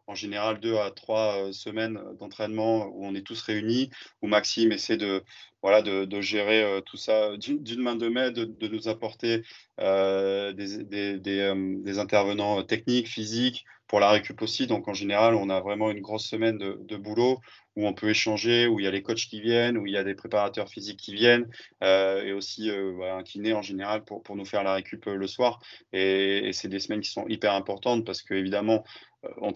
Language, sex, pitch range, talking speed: French, male, 95-110 Hz, 215 wpm